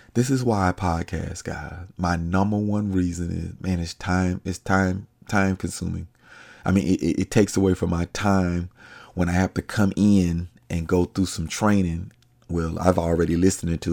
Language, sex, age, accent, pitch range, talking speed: English, male, 30-49, American, 85-110 Hz, 185 wpm